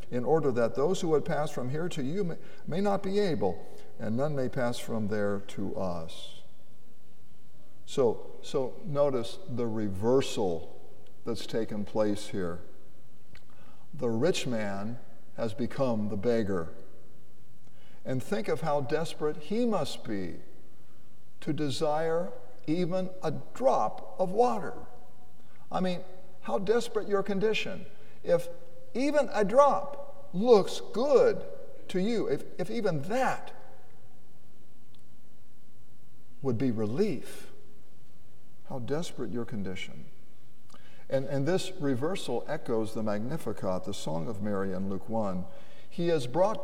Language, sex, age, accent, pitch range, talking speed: English, male, 60-79, American, 110-185 Hz, 125 wpm